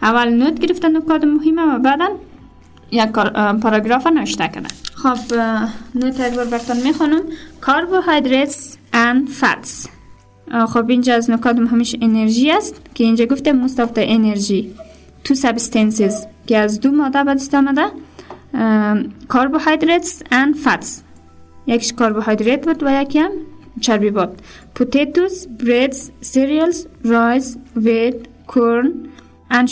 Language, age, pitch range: English, 20-39, 230-295 Hz